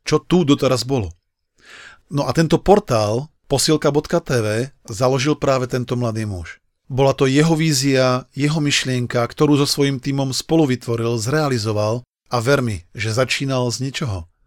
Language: Slovak